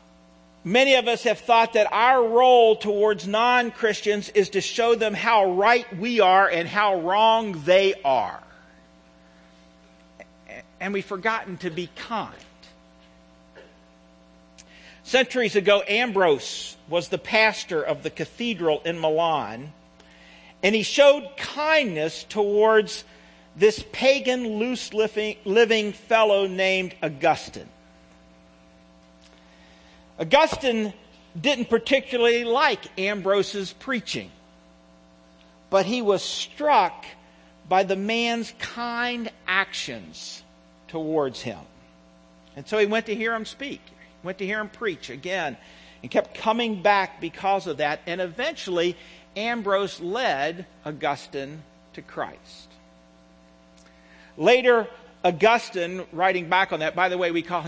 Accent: American